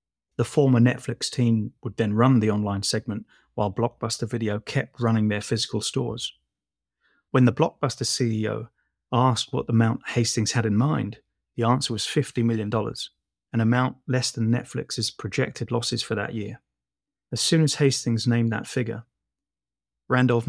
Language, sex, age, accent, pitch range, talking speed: English, male, 20-39, British, 105-125 Hz, 155 wpm